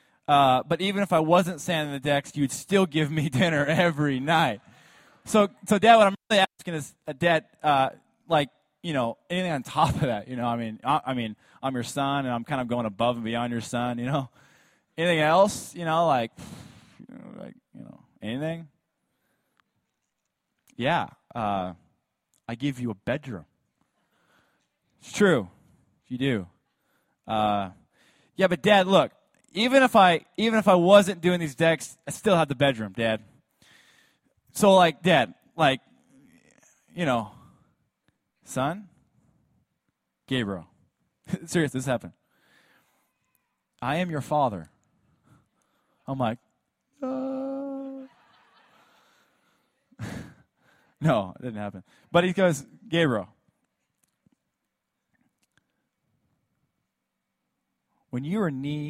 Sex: male